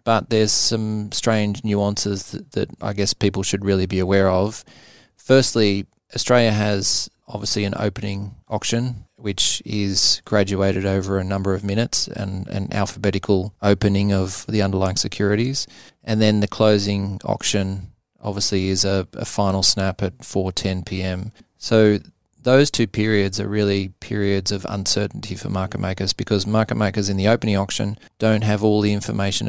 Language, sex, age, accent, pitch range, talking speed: English, male, 20-39, Australian, 100-110 Hz, 155 wpm